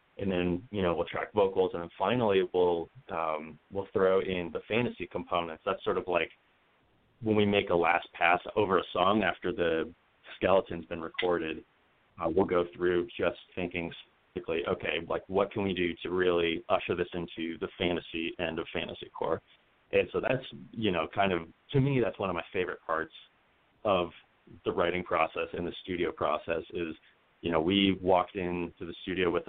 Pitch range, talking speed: 85-95 Hz, 185 wpm